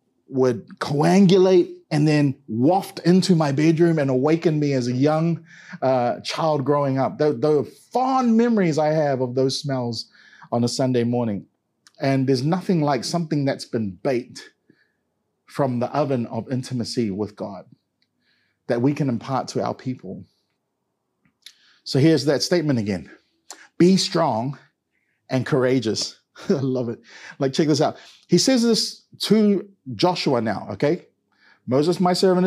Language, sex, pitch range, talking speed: English, male, 130-165 Hz, 145 wpm